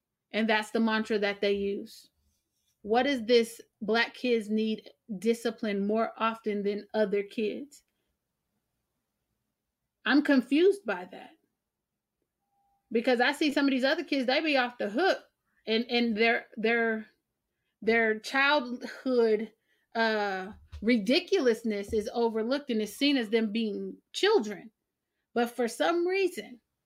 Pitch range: 230-285 Hz